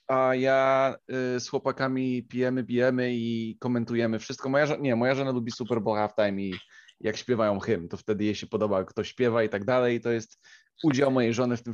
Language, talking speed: Polish, 210 wpm